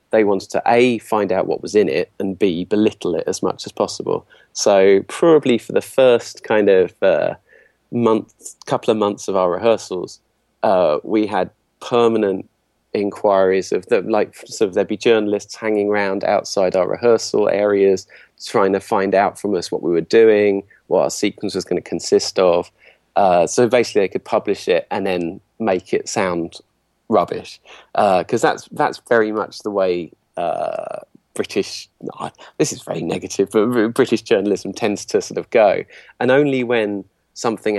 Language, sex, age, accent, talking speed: English, male, 30-49, British, 175 wpm